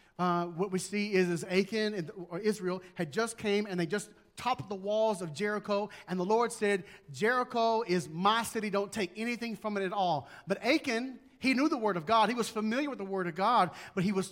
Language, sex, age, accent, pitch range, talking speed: English, male, 40-59, American, 175-220 Hz, 225 wpm